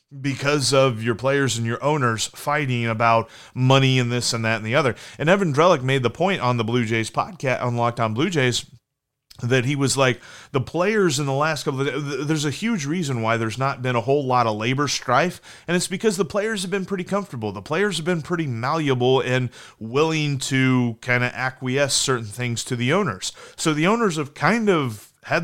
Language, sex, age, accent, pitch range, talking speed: English, male, 30-49, American, 125-160 Hz, 215 wpm